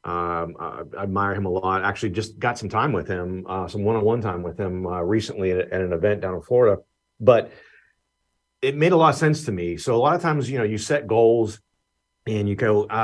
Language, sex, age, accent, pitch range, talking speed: English, male, 40-59, American, 100-130 Hz, 240 wpm